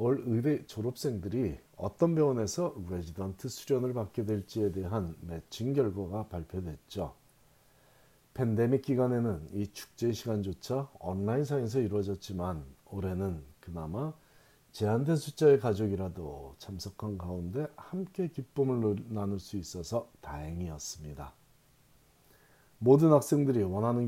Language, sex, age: Korean, male, 40-59